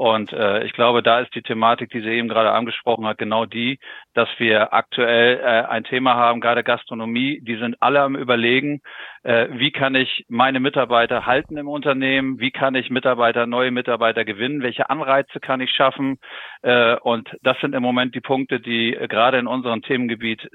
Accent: German